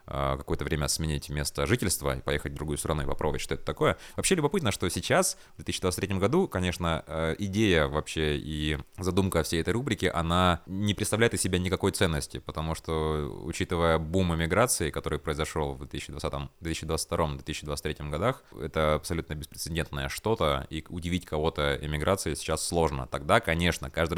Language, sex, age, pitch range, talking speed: Russian, male, 20-39, 75-90 Hz, 150 wpm